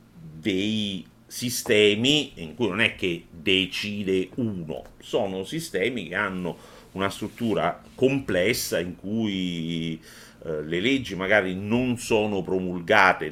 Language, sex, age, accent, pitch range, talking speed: Italian, male, 50-69, native, 70-100 Hz, 115 wpm